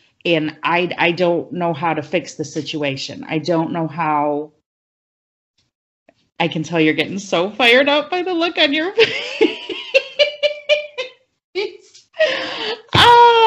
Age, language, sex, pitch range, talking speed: 40-59, English, female, 165-255 Hz, 125 wpm